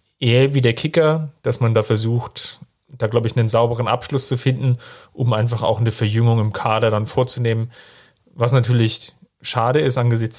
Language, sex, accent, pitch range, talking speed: German, male, German, 110-125 Hz, 175 wpm